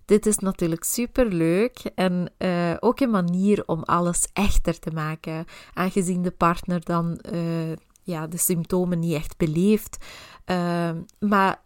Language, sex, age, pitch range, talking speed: Dutch, female, 20-39, 170-205 Hz, 135 wpm